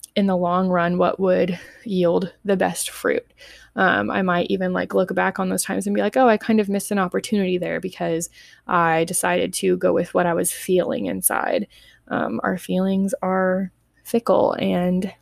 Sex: female